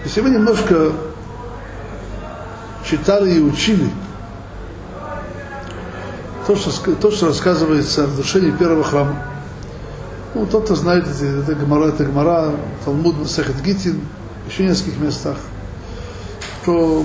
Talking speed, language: 105 wpm, Russian